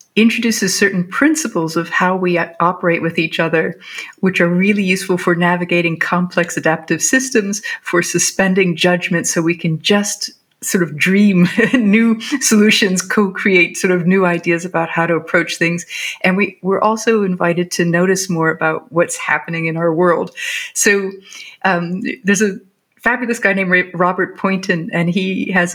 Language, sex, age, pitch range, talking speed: English, female, 50-69, 175-210 Hz, 155 wpm